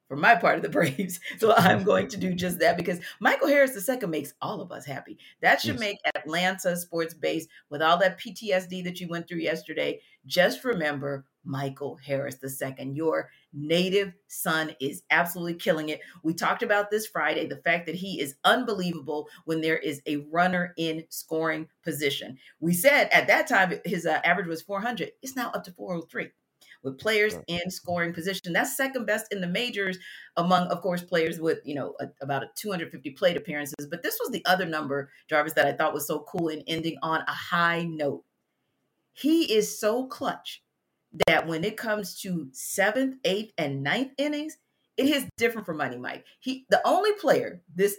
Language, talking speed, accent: English, 190 wpm, American